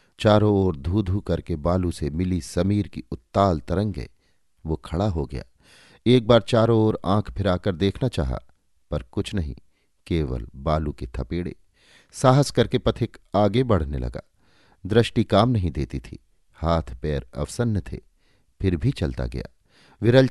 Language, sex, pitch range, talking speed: Hindi, male, 75-110 Hz, 150 wpm